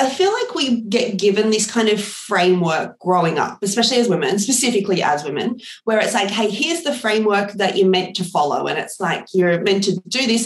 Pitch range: 180-215 Hz